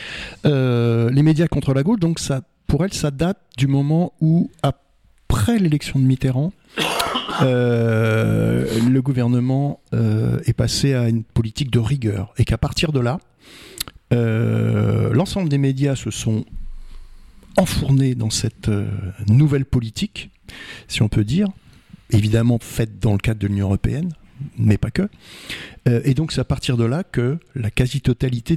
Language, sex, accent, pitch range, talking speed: French, male, French, 110-140 Hz, 155 wpm